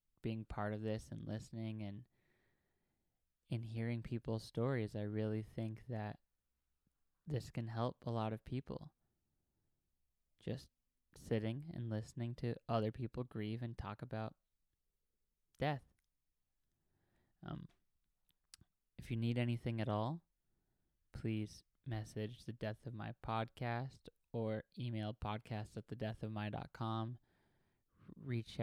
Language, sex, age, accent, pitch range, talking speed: English, male, 20-39, American, 105-120 Hz, 120 wpm